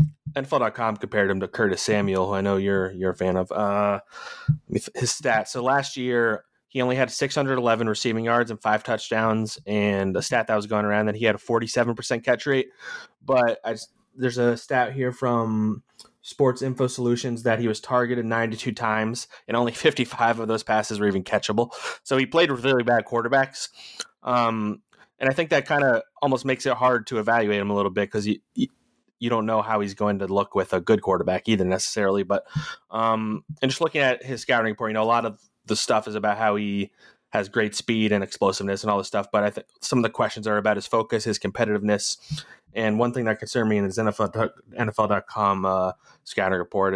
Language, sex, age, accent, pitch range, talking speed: English, male, 20-39, American, 105-125 Hz, 210 wpm